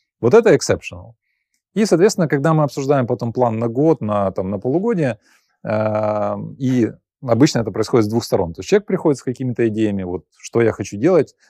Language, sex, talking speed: Ukrainian, male, 185 wpm